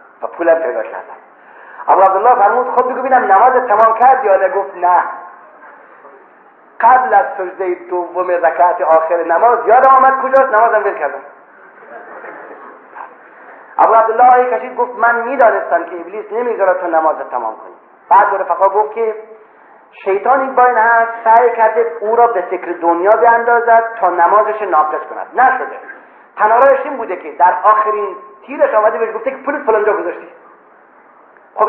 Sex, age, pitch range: male, 40-59, 190-250 Hz